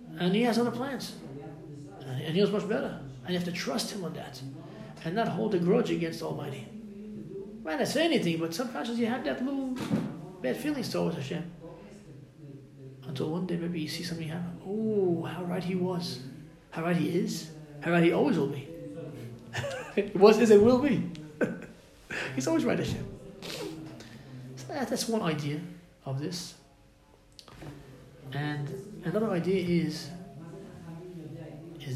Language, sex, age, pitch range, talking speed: English, male, 30-49, 150-195 Hz, 155 wpm